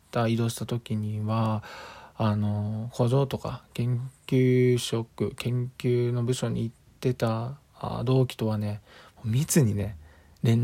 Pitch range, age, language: 110-150 Hz, 20-39, Japanese